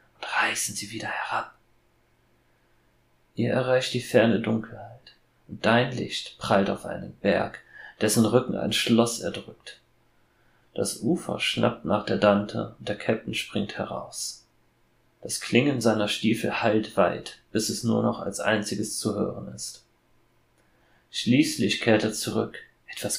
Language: German